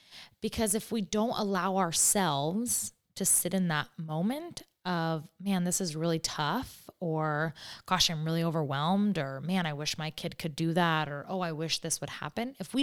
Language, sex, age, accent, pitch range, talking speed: English, female, 20-39, American, 155-190 Hz, 185 wpm